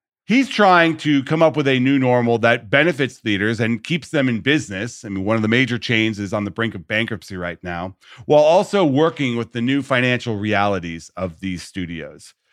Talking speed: 205 wpm